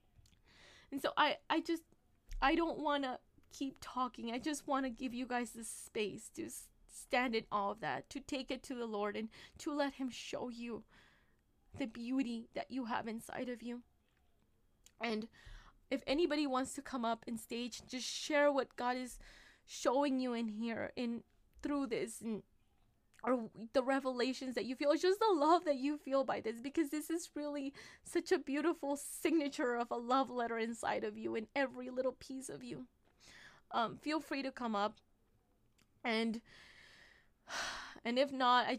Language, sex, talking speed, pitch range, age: English, female, 180 wpm, 220-275 Hz, 10-29